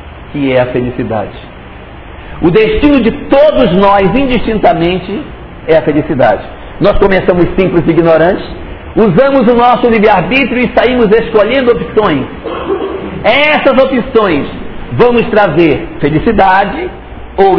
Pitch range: 175-240 Hz